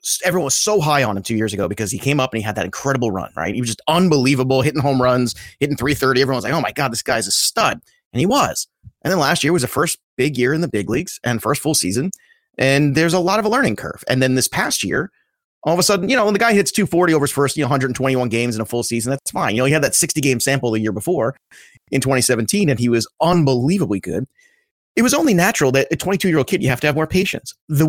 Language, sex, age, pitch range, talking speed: English, male, 30-49, 125-170 Hz, 275 wpm